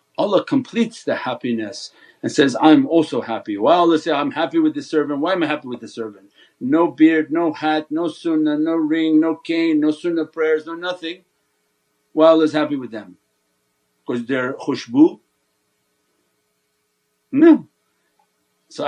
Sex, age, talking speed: male, 50-69, 160 wpm